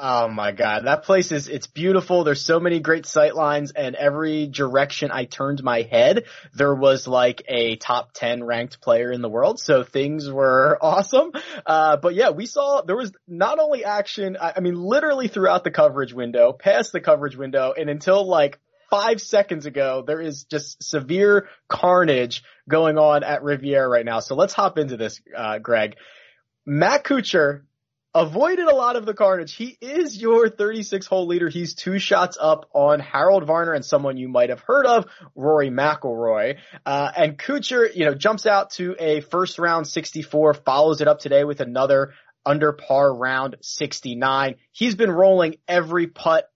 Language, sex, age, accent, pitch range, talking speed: English, male, 20-39, American, 140-195 Hz, 180 wpm